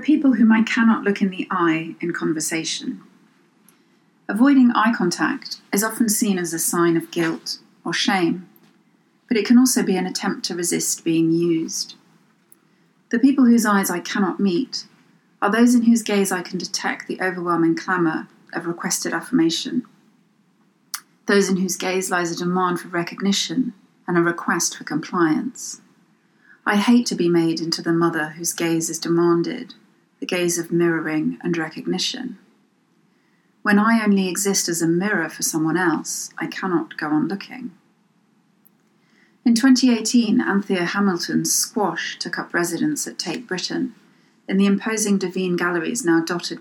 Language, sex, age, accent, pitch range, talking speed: English, female, 30-49, British, 170-225 Hz, 155 wpm